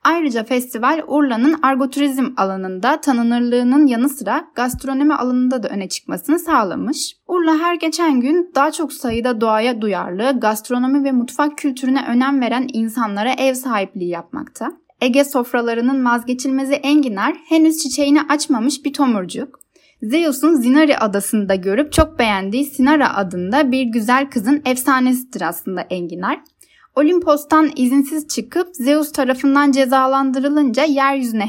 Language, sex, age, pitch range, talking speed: Turkish, female, 10-29, 240-295 Hz, 120 wpm